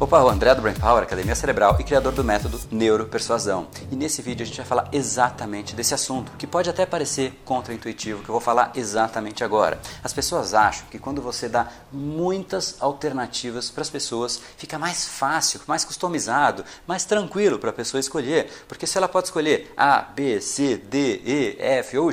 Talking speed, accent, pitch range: 185 wpm, Brazilian, 115-160 Hz